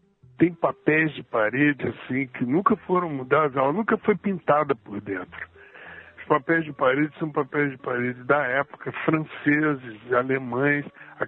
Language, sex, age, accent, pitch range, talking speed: Portuguese, male, 60-79, Brazilian, 125-170 Hz, 150 wpm